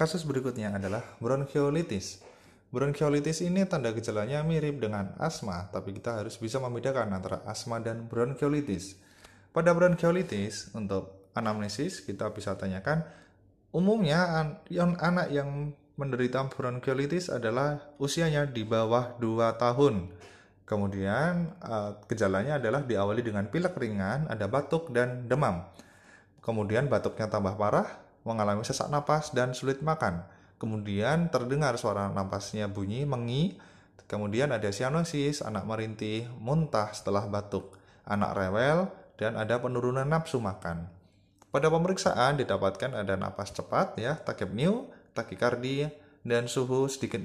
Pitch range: 100-145 Hz